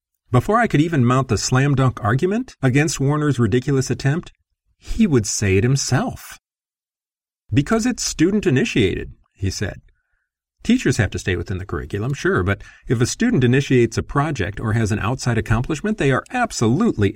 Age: 40-59